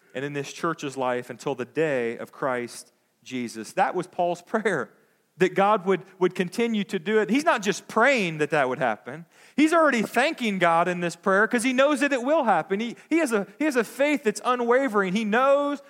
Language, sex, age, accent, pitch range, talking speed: English, male, 40-59, American, 140-210 Hz, 205 wpm